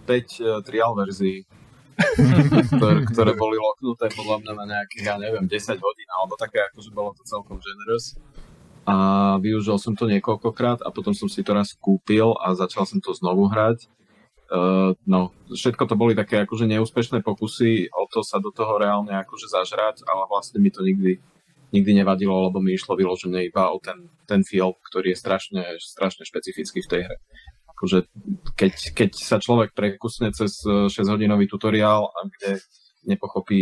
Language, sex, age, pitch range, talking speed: Slovak, male, 30-49, 95-130 Hz, 165 wpm